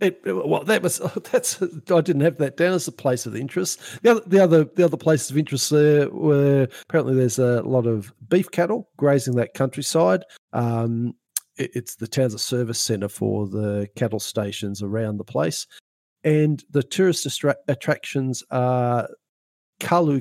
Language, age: English, 50-69